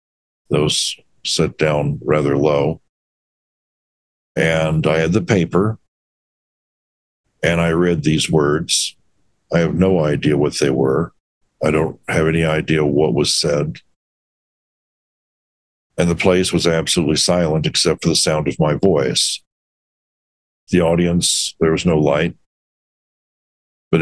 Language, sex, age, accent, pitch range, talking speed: English, male, 60-79, American, 75-85 Hz, 125 wpm